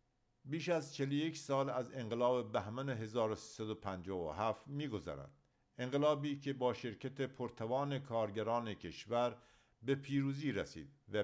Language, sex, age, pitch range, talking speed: English, male, 50-69, 110-135 Hz, 110 wpm